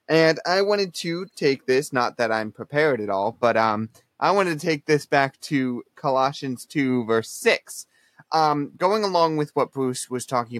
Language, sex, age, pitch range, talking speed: English, male, 20-39, 120-150 Hz, 185 wpm